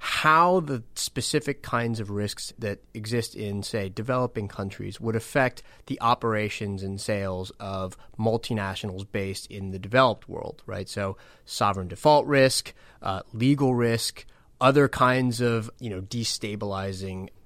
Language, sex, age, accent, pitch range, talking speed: English, male, 30-49, American, 100-125 Hz, 135 wpm